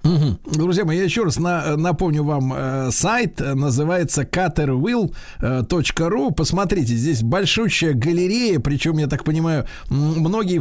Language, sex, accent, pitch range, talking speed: Russian, male, native, 135-180 Hz, 105 wpm